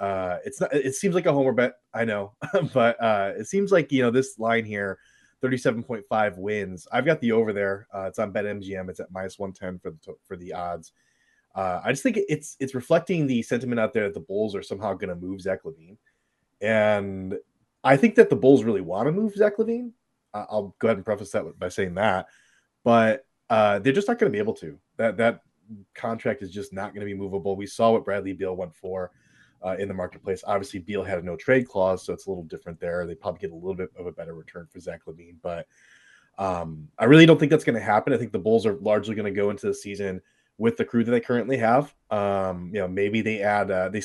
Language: English